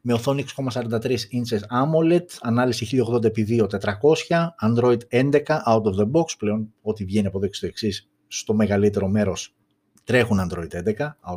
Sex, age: male, 30-49